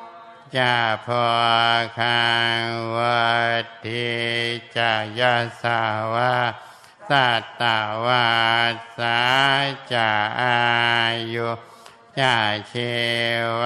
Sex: male